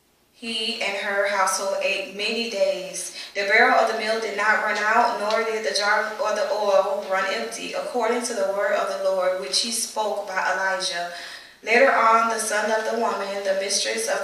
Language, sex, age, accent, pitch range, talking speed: English, female, 10-29, American, 195-230 Hz, 200 wpm